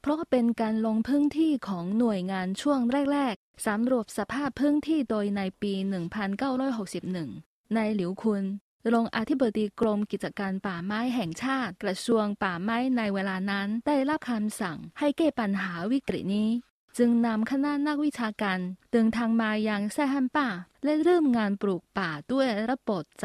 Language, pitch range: Thai, 195-270 Hz